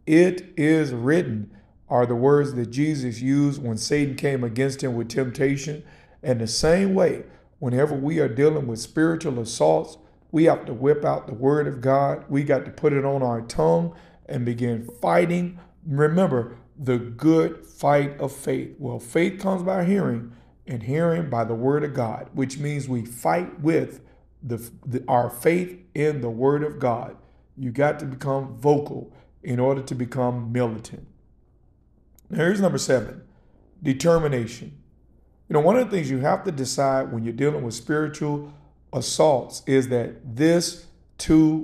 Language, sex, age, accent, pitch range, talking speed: English, male, 50-69, American, 120-150 Hz, 165 wpm